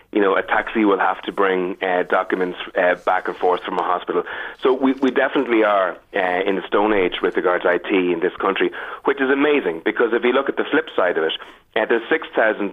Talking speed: 235 wpm